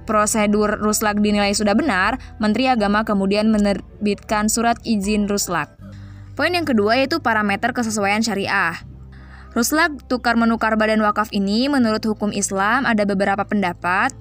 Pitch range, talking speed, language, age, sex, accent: 195-230 Hz, 125 wpm, Indonesian, 20-39, female, native